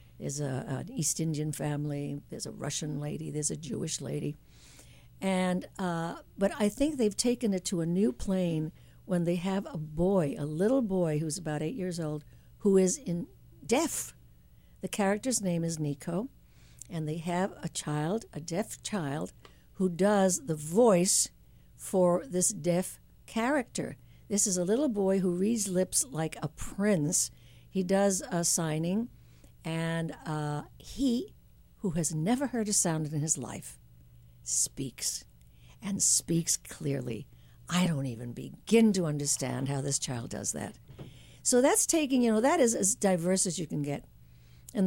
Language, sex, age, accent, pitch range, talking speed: English, female, 60-79, American, 140-195 Hz, 160 wpm